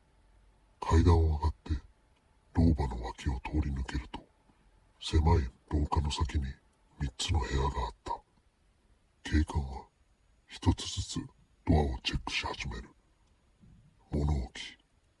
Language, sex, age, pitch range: Japanese, female, 60-79, 75-90 Hz